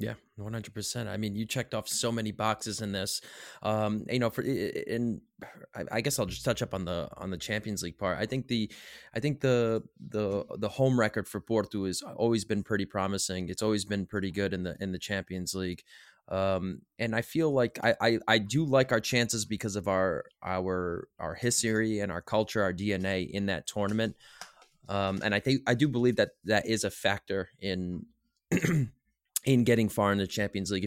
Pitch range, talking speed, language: 95-110 Hz, 205 wpm, English